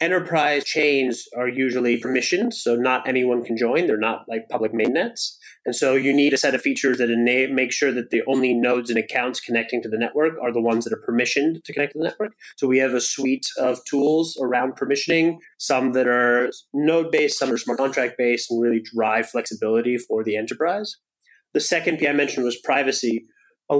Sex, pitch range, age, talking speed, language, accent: male, 120-150 Hz, 30-49, 200 wpm, English, American